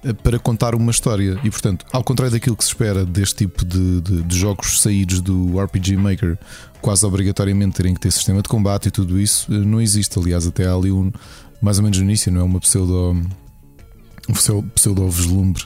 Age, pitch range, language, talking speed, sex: 20-39, 95-110 Hz, Portuguese, 195 wpm, male